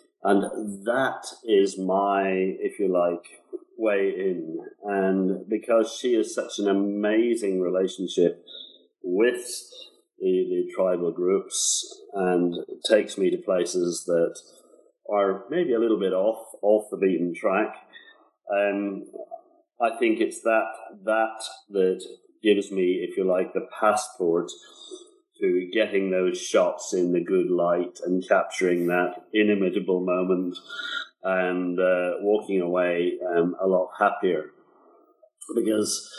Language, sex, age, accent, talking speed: English, male, 40-59, British, 120 wpm